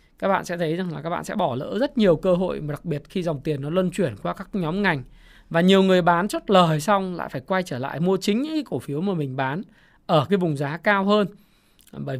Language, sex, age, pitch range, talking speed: Vietnamese, male, 20-39, 160-225 Hz, 275 wpm